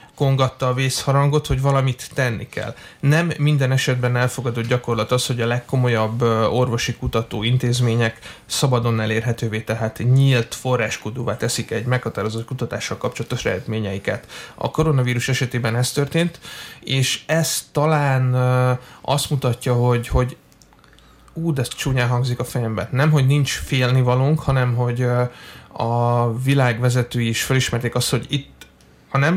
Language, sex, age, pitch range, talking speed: Hungarian, male, 30-49, 120-140 Hz, 125 wpm